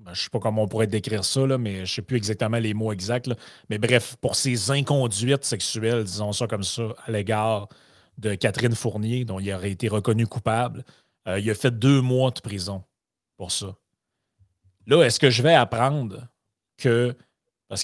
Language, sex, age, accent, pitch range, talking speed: French, male, 30-49, Canadian, 110-140 Hz, 190 wpm